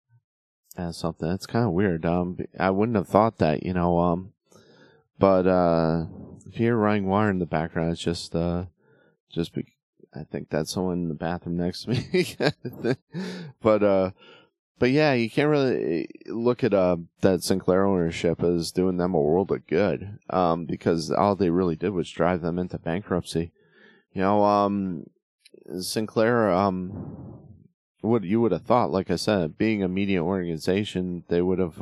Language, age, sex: English, 30-49, male